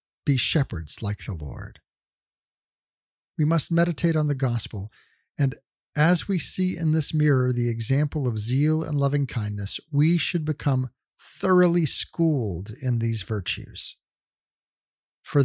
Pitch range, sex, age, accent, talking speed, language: 120-160 Hz, male, 50-69, American, 130 wpm, English